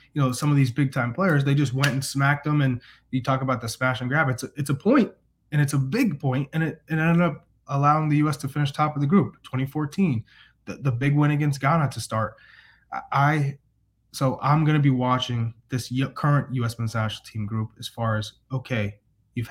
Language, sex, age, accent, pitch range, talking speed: English, male, 20-39, American, 115-140 Hz, 230 wpm